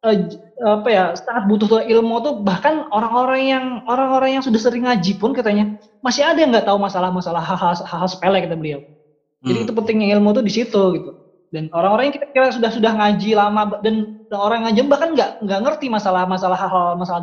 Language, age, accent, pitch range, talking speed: Indonesian, 20-39, native, 170-215 Hz, 185 wpm